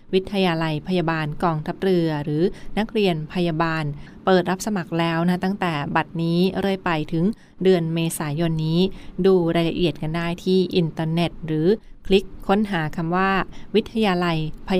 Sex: female